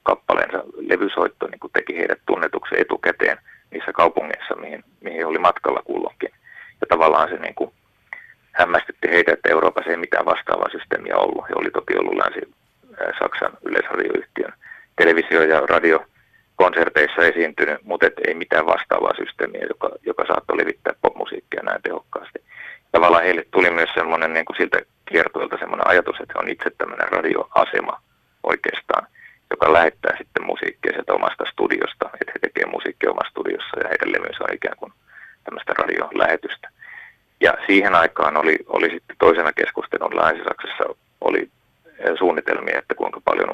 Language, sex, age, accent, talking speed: Finnish, male, 30-49, native, 145 wpm